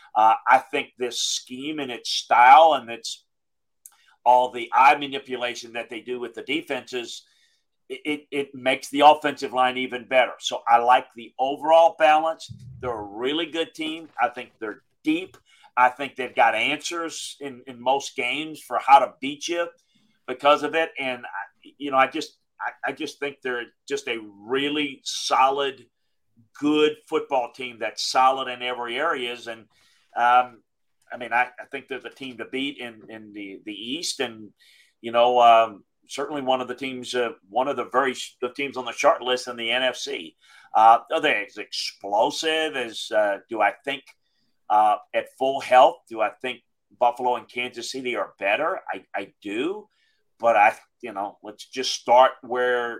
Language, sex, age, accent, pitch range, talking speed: English, male, 40-59, American, 120-160 Hz, 180 wpm